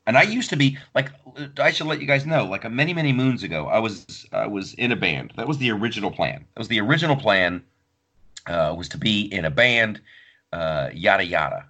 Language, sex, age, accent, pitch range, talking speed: English, male, 40-59, American, 95-135 Hz, 230 wpm